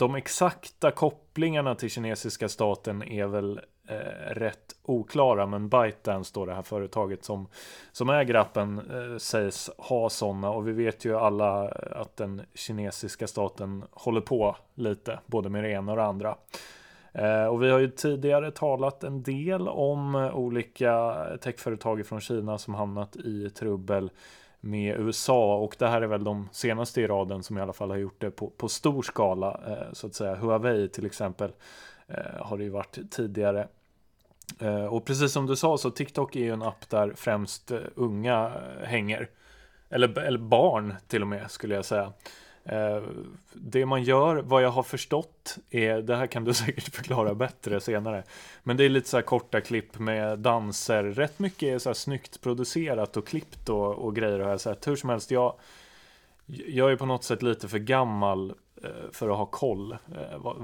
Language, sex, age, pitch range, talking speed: Swedish, male, 20-39, 105-125 Hz, 175 wpm